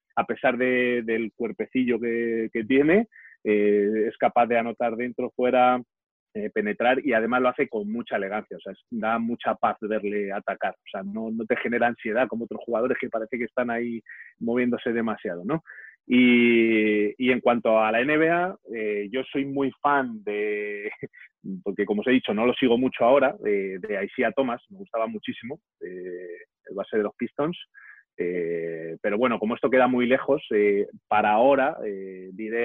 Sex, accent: male, Spanish